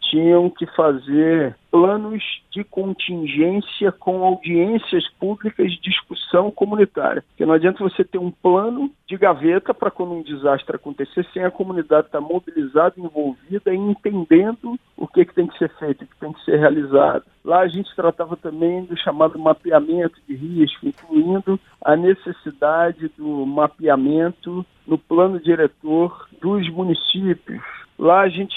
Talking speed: 145 wpm